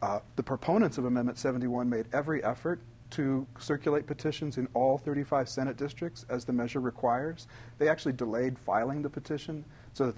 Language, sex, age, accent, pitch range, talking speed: English, male, 40-59, American, 120-145 Hz, 170 wpm